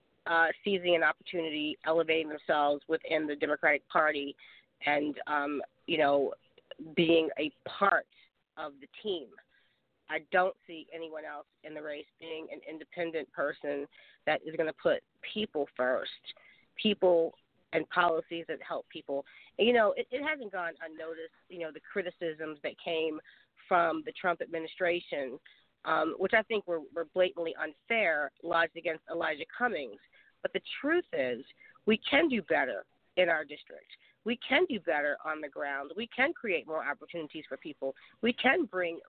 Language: English